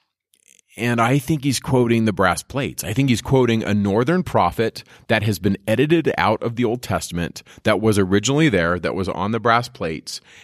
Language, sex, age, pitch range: English, male, 30-49, 95-125 Hz